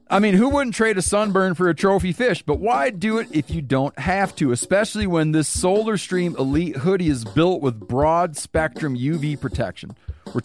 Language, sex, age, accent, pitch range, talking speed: English, male, 40-59, American, 130-180 Hz, 195 wpm